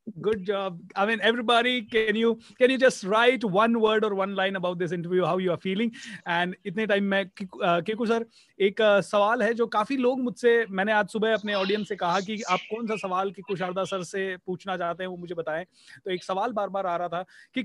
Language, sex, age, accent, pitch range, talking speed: Hindi, male, 30-49, native, 175-220 Hz, 230 wpm